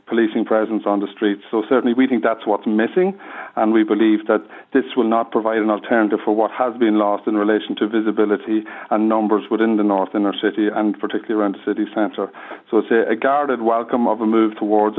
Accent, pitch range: Irish, 105-125 Hz